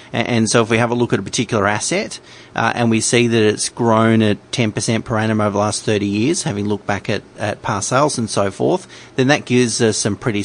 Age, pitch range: 30-49, 105-130 Hz